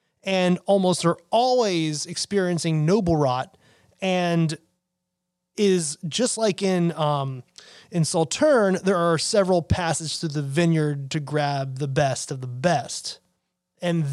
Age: 30-49